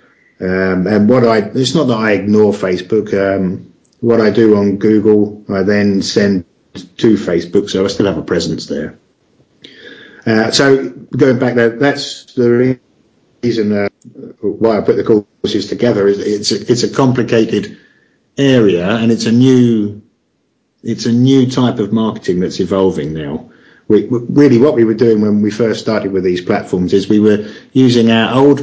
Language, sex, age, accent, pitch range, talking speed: English, male, 50-69, British, 100-120 Hz, 170 wpm